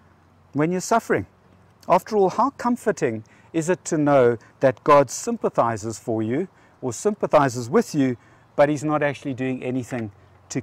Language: English